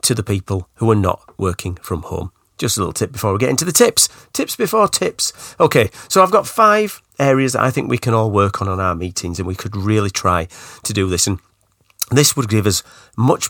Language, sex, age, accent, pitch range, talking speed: English, male, 40-59, British, 95-135 Hz, 235 wpm